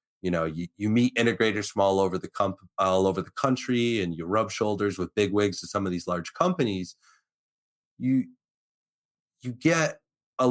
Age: 30-49